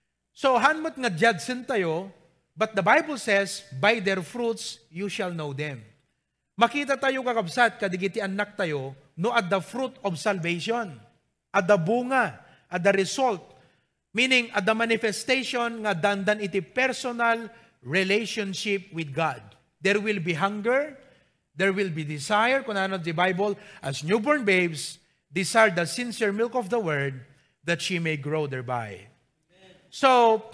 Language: English